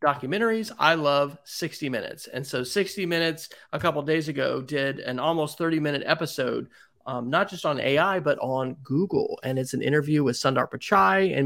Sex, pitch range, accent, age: male, 130-165 Hz, American, 30-49